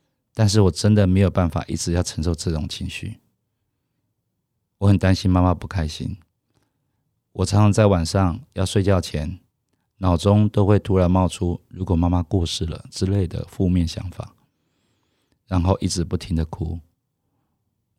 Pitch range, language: 85-105 Hz, Chinese